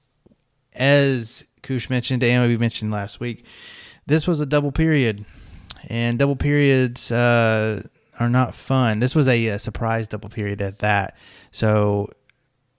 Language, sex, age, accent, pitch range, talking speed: English, male, 30-49, American, 110-130 Hz, 140 wpm